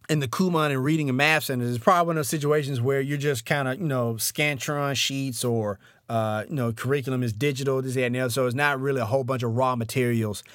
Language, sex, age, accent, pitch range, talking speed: English, male, 30-49, American, 125-150 Hz, 255 wpm